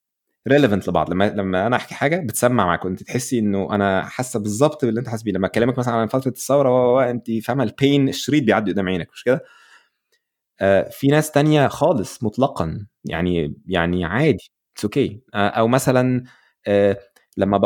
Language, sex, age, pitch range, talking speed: Arabic, male, 20-39, 100-125 Hz, 165 wpm